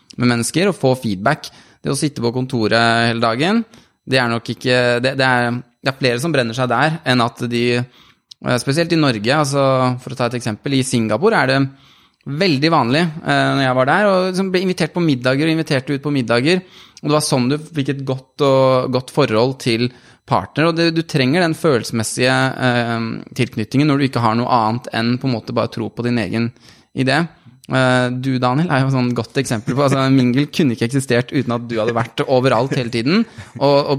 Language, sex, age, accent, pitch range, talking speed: English, male, 20-39, Norwegian, 115-135 Hz, 195 wpm